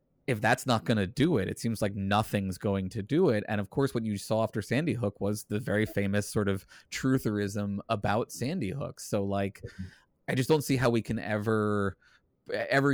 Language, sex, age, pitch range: English, male, 20-39, 95-115 Hz